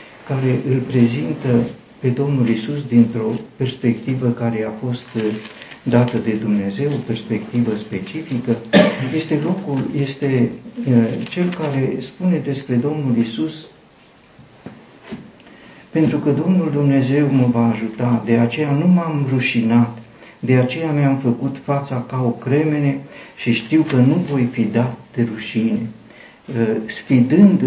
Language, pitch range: Romanian, 115-140 Hz